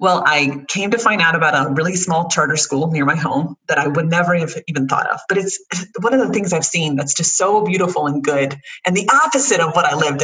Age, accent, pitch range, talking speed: 30-49, American, 145-200 Hz, 260 wpm